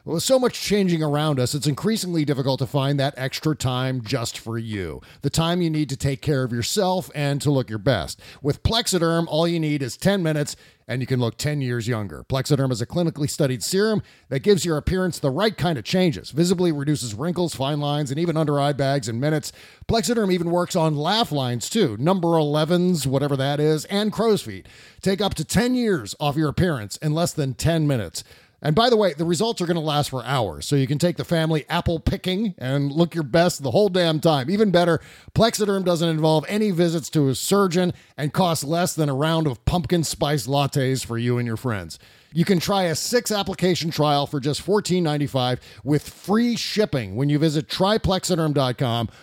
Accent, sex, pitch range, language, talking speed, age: American, male, 135-180 Hz, English, 205 wpm, 40-59